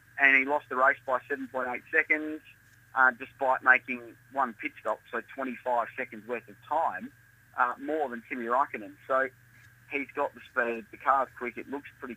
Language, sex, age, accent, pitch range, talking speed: English, male, 30-49, Australian, 115-135 Hz, 180 wpm